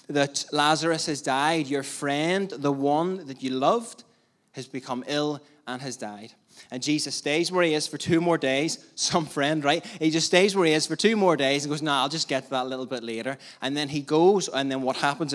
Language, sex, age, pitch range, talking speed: English, male, 20-39, 130-165 Hz, 235 wpm